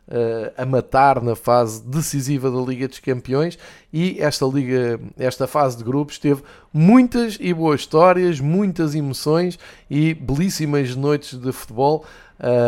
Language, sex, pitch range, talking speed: Portuguese, male, 125-160 Hz, 130 wpm